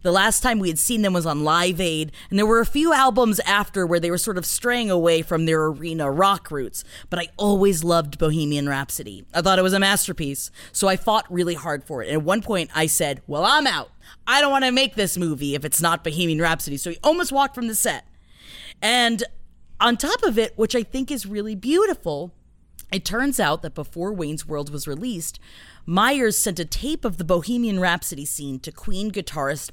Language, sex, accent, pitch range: English, female, American, 160-215 Hz